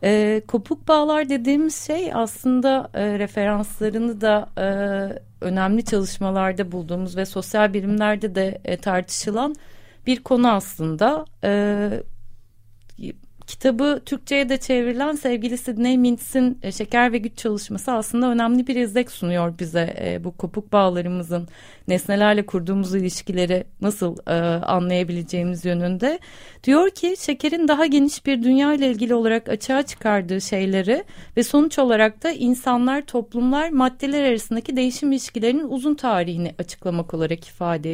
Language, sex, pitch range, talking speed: Turkish, female, 195-275 Hz, 120 wpm